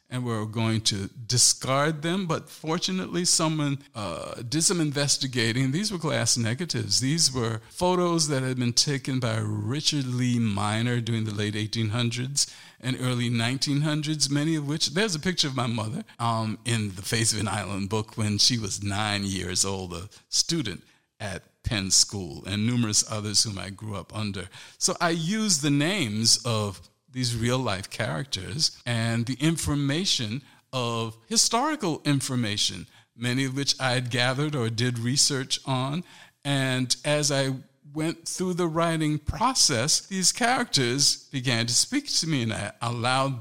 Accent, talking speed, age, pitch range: American, 160 wpm, 50-69, 110-145 Hz